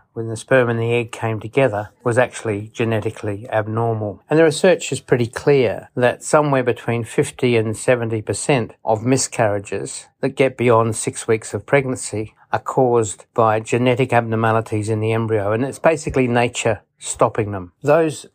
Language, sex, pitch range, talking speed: English, male, 110-130 Hz, 155 wpm